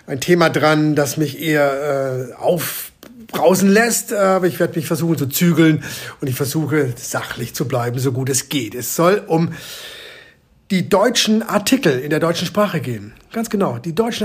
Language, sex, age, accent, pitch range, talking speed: German, male, 50-69, German, 140-180 Hz, 175 wpm